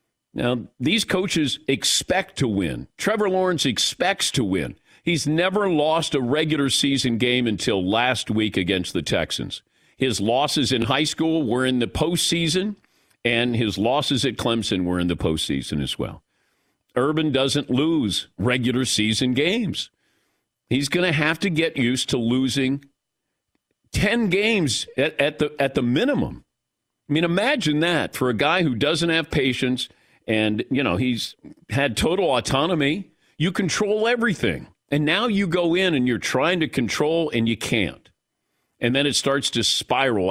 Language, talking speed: English, 160 wpm